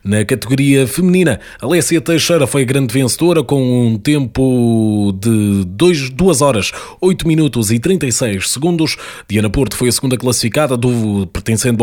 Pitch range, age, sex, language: 115-150 Hz, 20-39, male, Portuguese